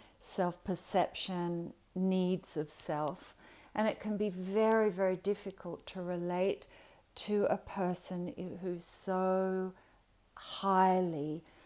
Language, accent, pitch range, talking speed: English, Australian, 155-185 Hz, 100 wpm